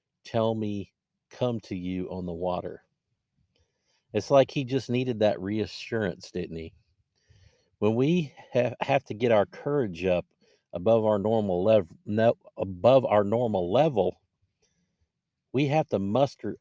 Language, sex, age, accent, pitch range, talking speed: English, male, 50-69, American, 95-120 Hz, 140 wpm